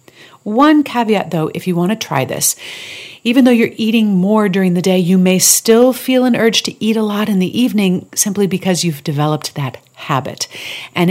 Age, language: 40-59, English